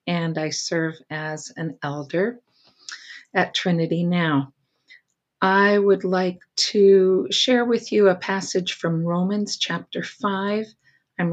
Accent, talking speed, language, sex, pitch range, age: American, 120 wpm, English, female, 170-215 Hz, 50-69